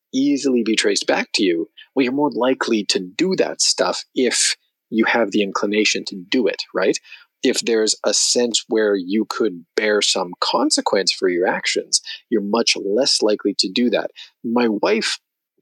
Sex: male